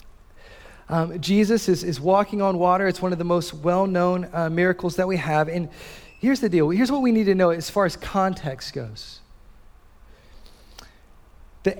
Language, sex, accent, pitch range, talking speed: English, male, American, 140-195 Hz, 180 wpm